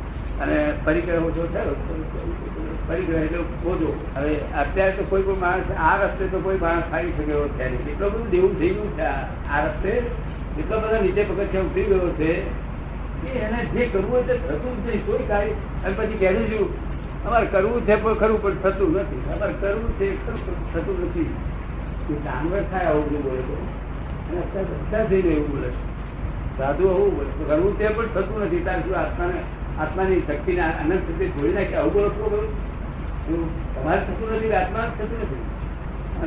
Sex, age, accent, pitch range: male, 60-79, native, 165-200 Hz